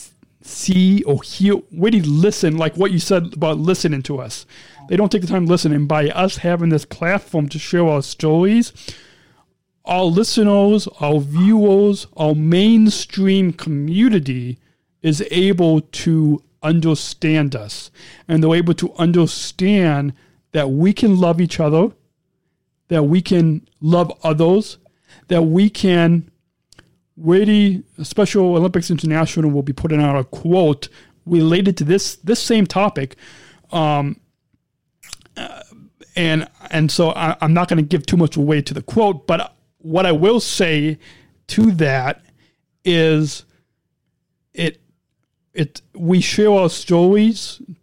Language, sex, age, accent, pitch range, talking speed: English, male, 40-59, American, 155-190 Hz, 140 wpm